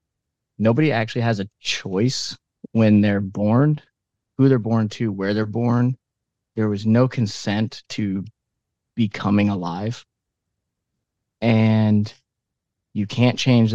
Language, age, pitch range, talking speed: English, 30-49, 100-115 Hz, 115 wpm